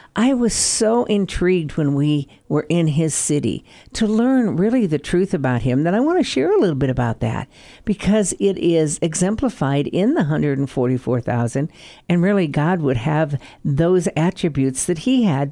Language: English